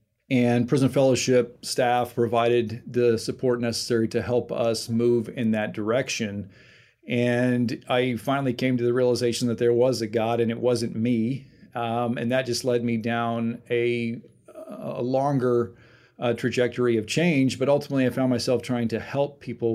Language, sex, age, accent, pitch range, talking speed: English, male, 40-59, American, 115-125 Hz, 165 wpm